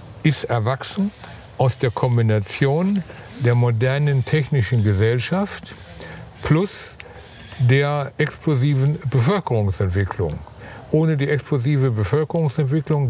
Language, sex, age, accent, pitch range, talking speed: German, male, 60-79, German, 110-140 Hz, 80 wpm